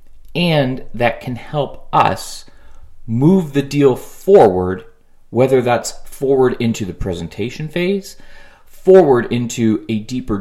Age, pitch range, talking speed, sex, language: 30-49, 100-130 Hz, 115 wpm, male, English